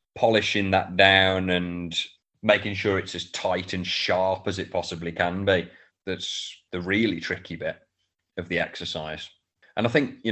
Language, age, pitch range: English, 30-49, 90-100 Hz